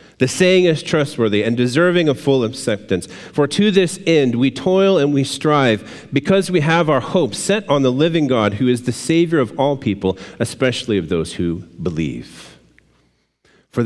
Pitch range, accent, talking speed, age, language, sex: 95-130 Hz, American, 180 wpm, 40-59, English, male